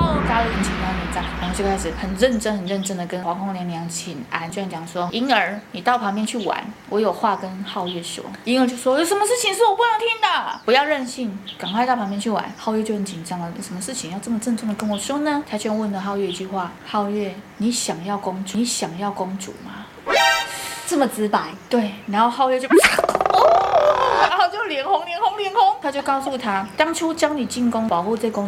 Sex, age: female, 20-39